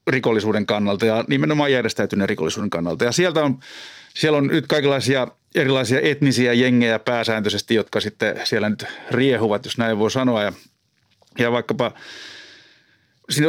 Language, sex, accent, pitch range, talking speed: Finnish, male, native, 115-150 Hz, 140 wpm